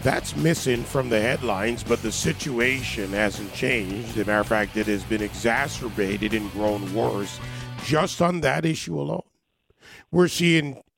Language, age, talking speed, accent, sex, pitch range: English, 40-59, 160 wpm, American, male, 110-160 Hz